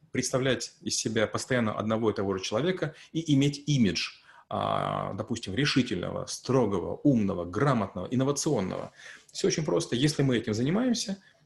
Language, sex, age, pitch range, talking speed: Russian, male, 30-49, 110-150 Hz, 130 wpm